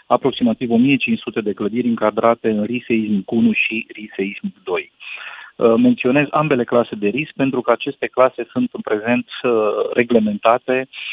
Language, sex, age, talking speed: Romanian, male, 40-59, 130 wpm